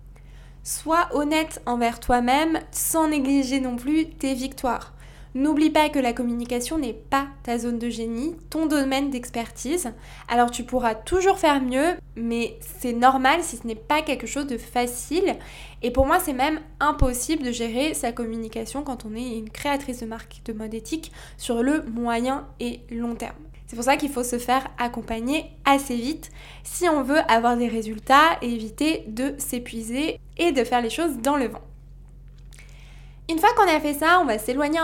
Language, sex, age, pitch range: French, female, 20-39, 235-300 Hz